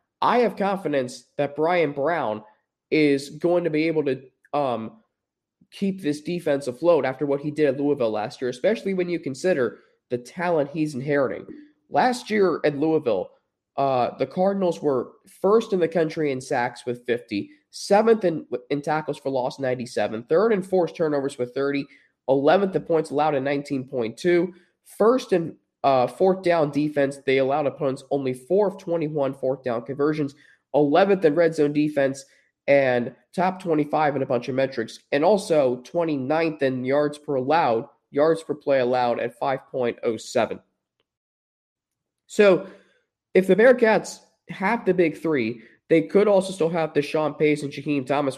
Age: 20-39